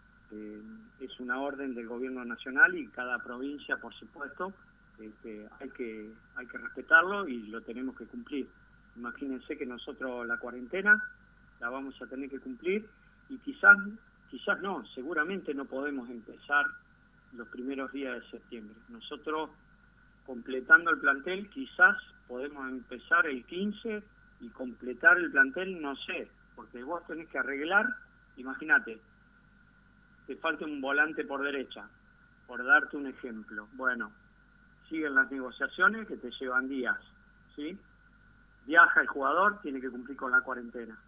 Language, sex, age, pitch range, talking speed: Spanish, male, 40-59, 125-210 Hz, 140 wpm